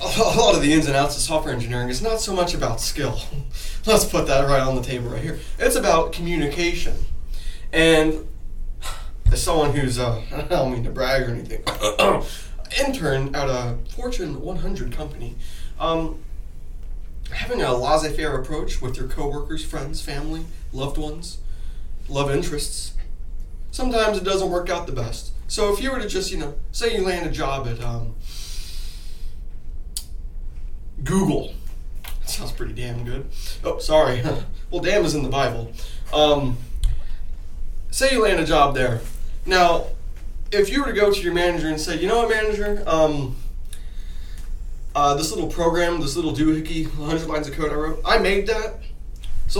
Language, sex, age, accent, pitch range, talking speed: English, male, 20-39, American, 115-175 Hz, 160 wpm